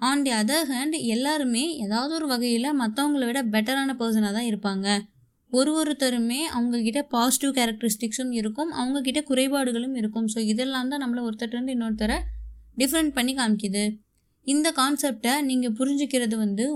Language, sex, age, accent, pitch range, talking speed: Tamil, female, 20-39, native, 225-275 Hz, 130 wpm